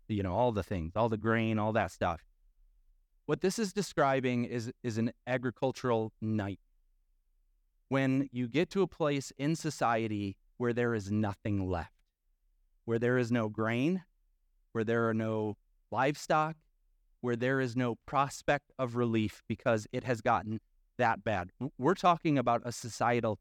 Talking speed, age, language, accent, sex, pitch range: 155 wpm, 30-49, English, American, male, 100-140 Hz